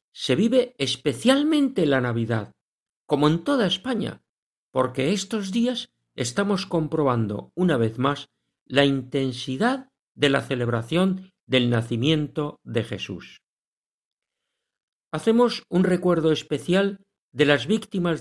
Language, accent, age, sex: Spanish, Spanish, 50-69, male